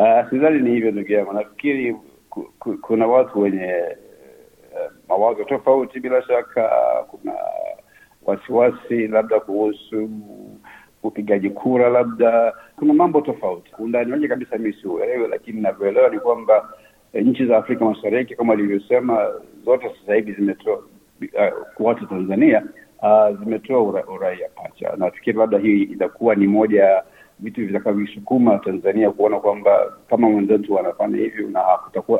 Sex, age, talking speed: male, 60-79, 135 wpm